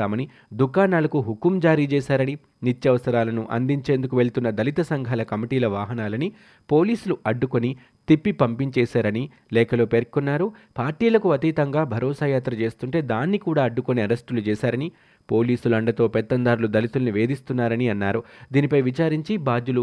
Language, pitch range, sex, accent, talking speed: Telugu, 115-145 Hz, male, native, 110 wpm